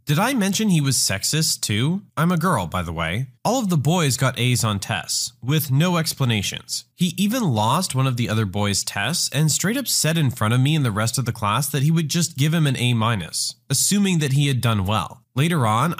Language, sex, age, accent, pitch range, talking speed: English, male, 20-39, American, 120-170 Hz, 240 wpm